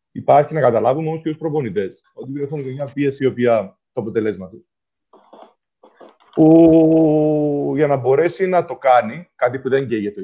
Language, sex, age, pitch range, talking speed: Greek, male, 30-49, 120-175 Hz, 165 wpm